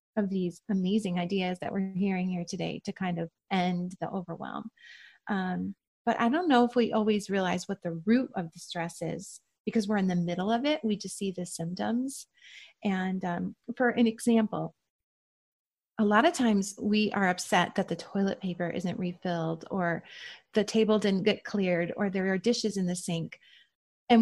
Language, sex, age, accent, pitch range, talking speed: English, female, 30-49, American, 180-220 Hz, 185 wpm